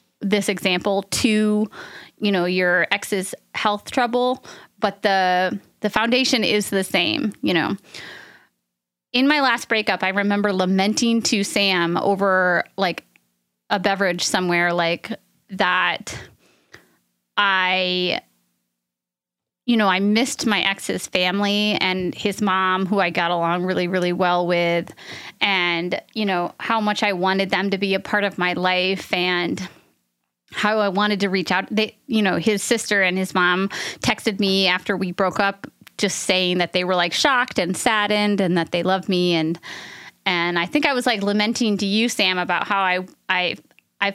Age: 20-39